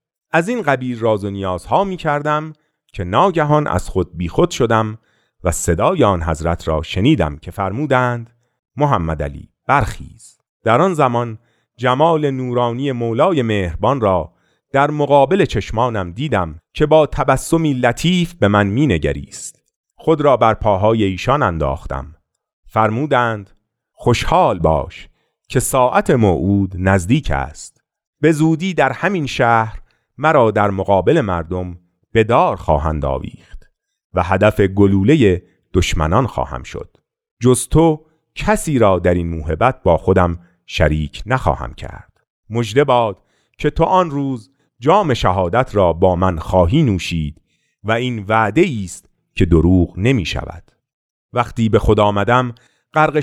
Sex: male